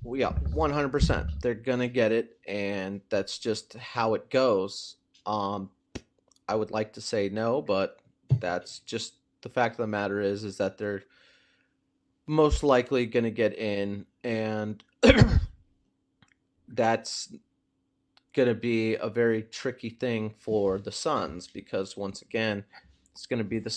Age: 30-49